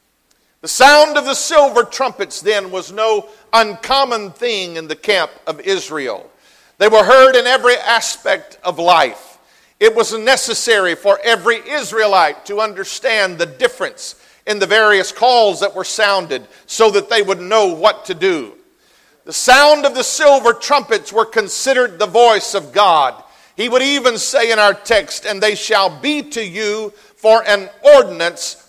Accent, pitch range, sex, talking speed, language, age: American, 190-250 Hz, male, 160 wpm, English, 50-69